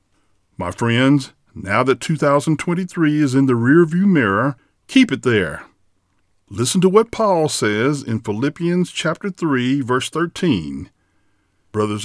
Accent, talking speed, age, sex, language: American, 125 wpm, 50-69, male, English